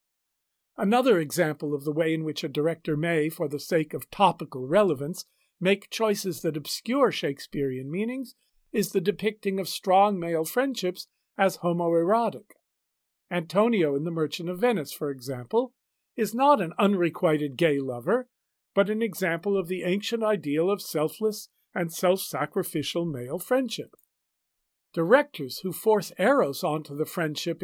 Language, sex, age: English, male, 50-69